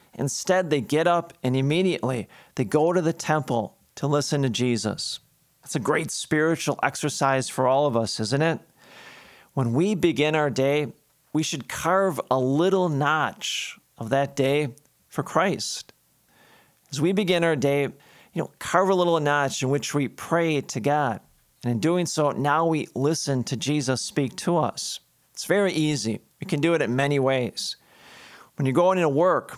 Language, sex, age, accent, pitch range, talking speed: English, male, 40-59, American, 130-165 Hz, 175 wpm